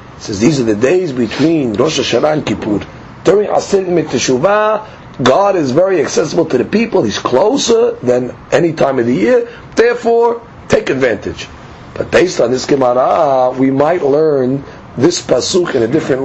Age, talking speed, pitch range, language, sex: 40-59, 165 wpm, 145-225 Hz, English, male